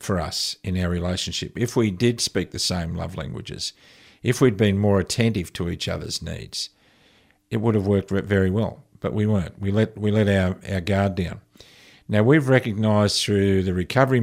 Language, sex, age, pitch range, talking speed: English, male, 50-69, 95-115 Hz, 190 wpm